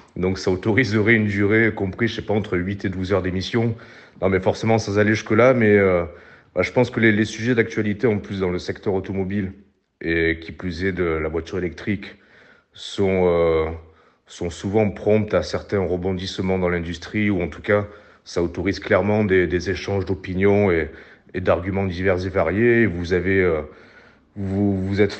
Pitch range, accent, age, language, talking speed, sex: 90-105 Hz, French, 40-59, French, 190 wpm, male